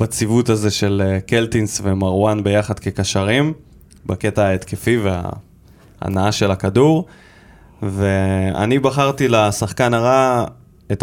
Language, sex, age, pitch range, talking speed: Hebrew, male, 20-39, 100-135 Hz, 90 wpm